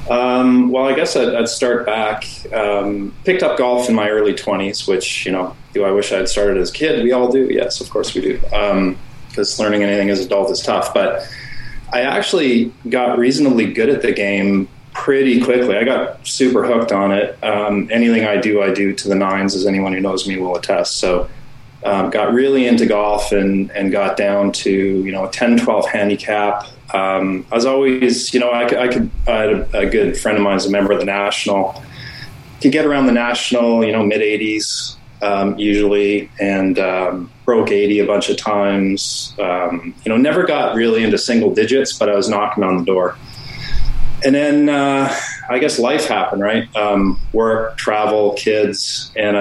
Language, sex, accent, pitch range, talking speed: English, male, American, 100-125 Hz, 195 wpm